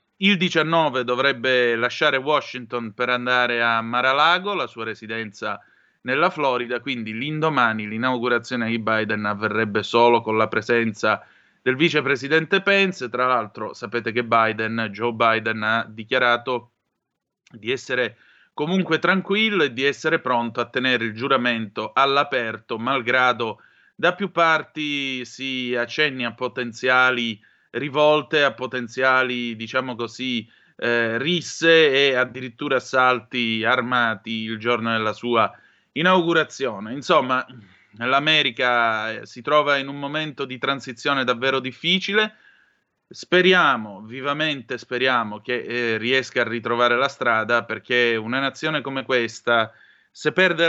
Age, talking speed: 30-49, 120 wpm